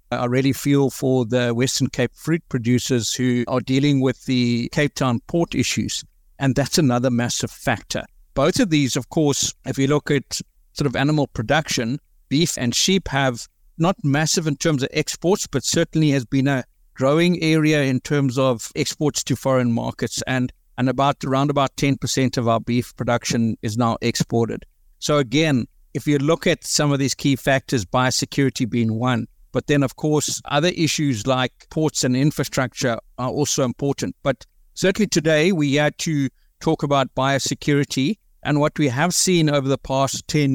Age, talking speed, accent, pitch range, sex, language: 60-79, 175 wpm, South African, 125-150 Hz, male, English